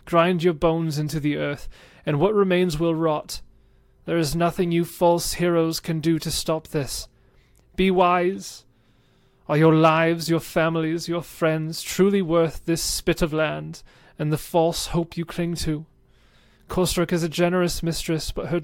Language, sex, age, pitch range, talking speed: English, male, 30-49, 125-165 Hz, 165 wpm